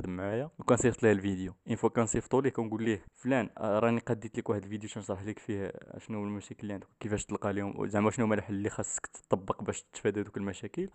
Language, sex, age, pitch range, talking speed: Arabic, male, 20-39, 105-135 Hz, 210 wpm